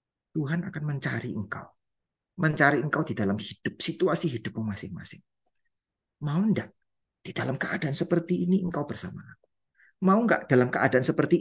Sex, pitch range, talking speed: male, 115-175 Hz, 140 wpm